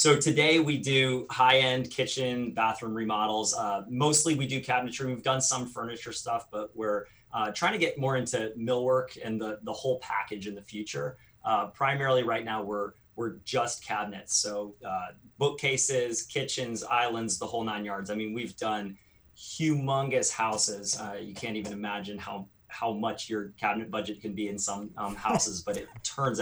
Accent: American